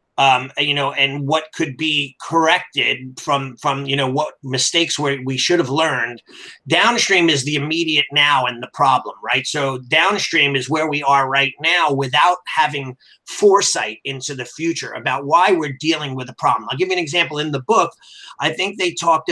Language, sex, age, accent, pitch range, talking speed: English, male, 30-49, American, 140-165 Hz, 185 wpm